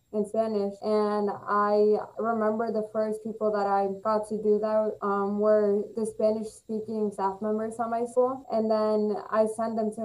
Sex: female